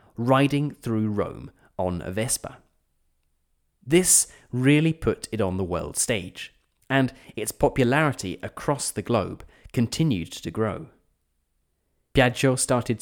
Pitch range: 100-135 Hz